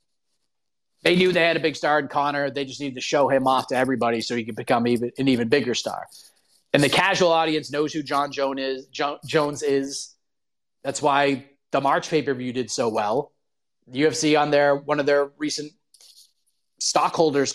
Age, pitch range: 30-49, 140-170 Hz